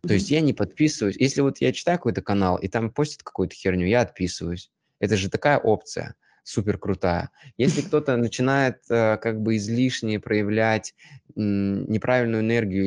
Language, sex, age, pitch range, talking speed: Russian, male, 20-39, 95-120 Hz, 155 wpm